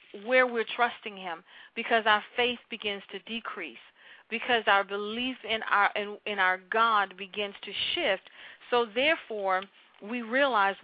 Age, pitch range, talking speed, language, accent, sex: 40-59, 205-255 Hz, 145 wpm, English, American, female